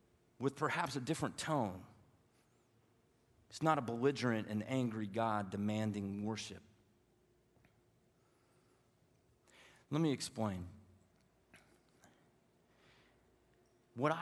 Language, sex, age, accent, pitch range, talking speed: English, male, 40-59, American, 105-125 Hz, 75 wpm